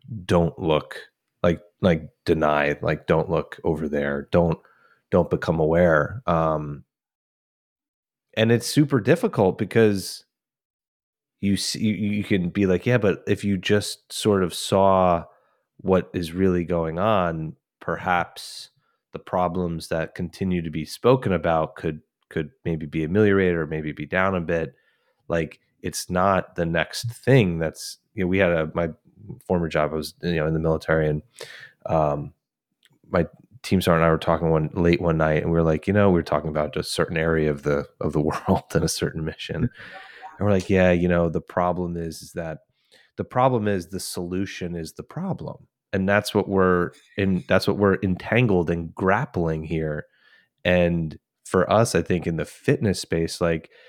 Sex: male